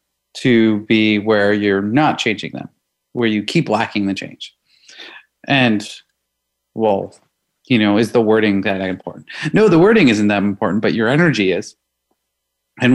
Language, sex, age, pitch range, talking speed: English, male, 30-49, 105-130 Hz, 155 wpm